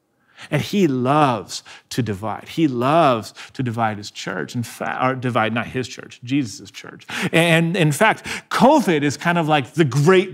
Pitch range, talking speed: 150-250 Hz, 175 wpm